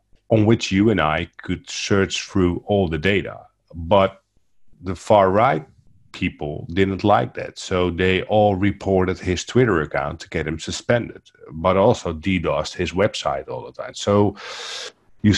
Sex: male